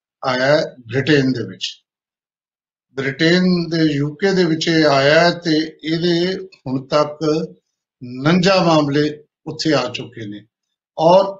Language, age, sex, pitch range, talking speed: Punjabi, 50-69, male, 135-170 Hz, 125 wpm